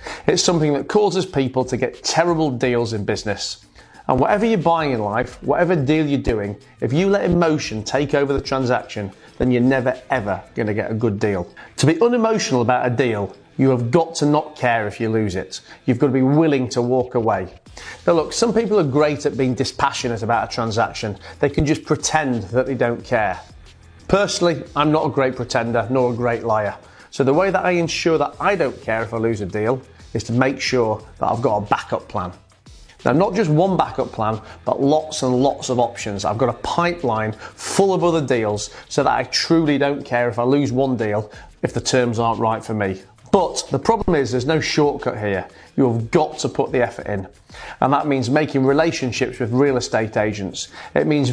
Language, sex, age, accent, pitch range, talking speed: English, male, 30-49, British, 115-150 Hz, 210 wpm